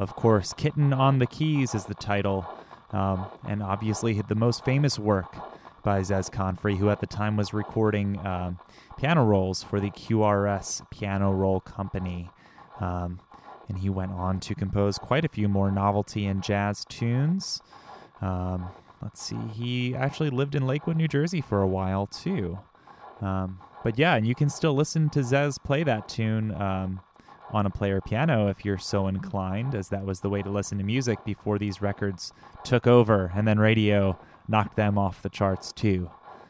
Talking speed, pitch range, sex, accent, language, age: 180 wpm, 100-120 Hz, male, American, English, 20-39